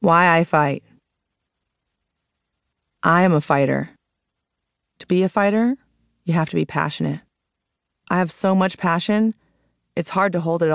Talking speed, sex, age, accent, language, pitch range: 145 wpm, female, 30-49, American, English, 145-180 Hz